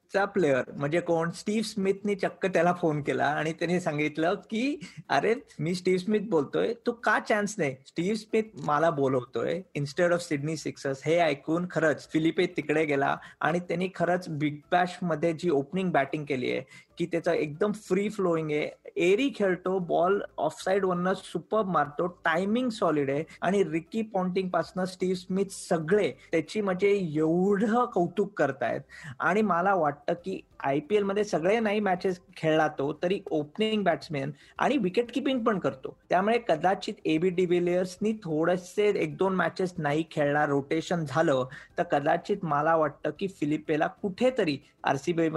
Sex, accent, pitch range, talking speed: male, native, 160-195 Hz, 155 wpm